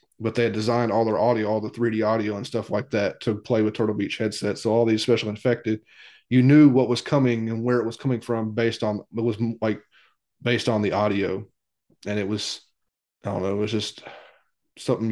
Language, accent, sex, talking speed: English, American, male, 220 wpm